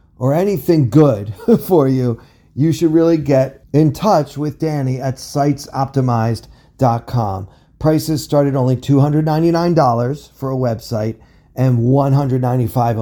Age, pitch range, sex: 40-59, 120-150 Hz, male